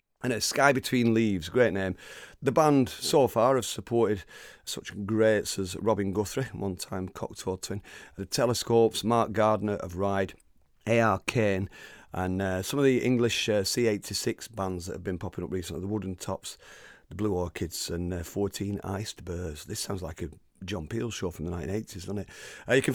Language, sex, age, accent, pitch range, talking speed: English, male, 40-59, British, 95-120 Hz, 185 wpm